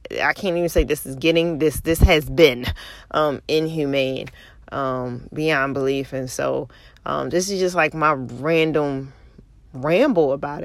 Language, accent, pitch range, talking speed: English, American, 150-230 Hz, 150 wpm